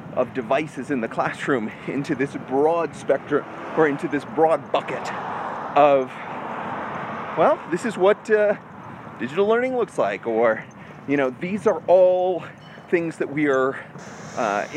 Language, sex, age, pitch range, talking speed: English, male, 30-49, 145-195 Hz, 140 wpm